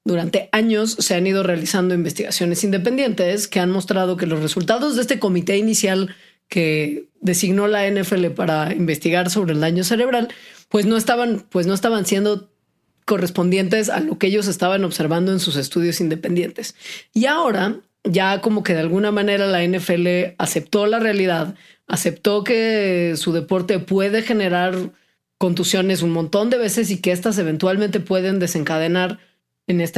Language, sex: Spanish, female